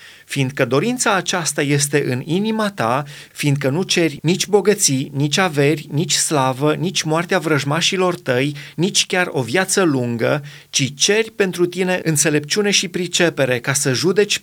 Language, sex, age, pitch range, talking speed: Romanian, male, 30-49, 135-175 Hz, 145 wpm